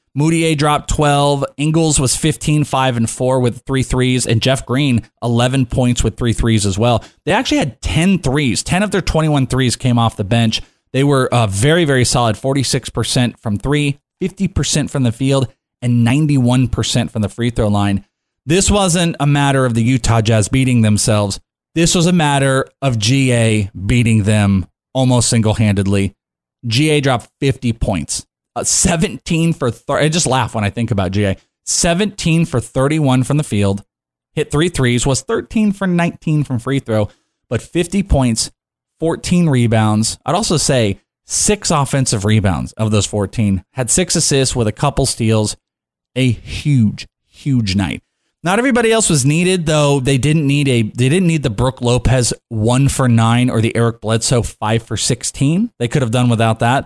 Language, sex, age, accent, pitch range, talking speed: English, male, 30-49, American, 115-145 Hz, 175 wpm